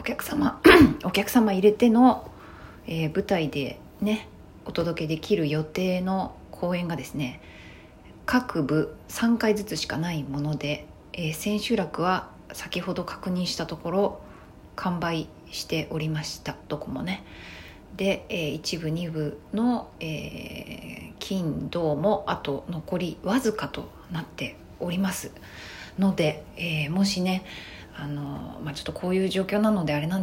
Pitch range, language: 145-190 Hz, Japanese